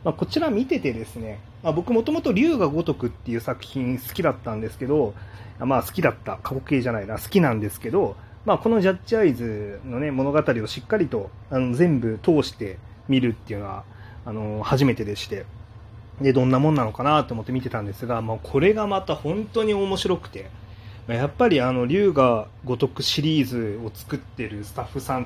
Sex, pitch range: male, 105-135 Hz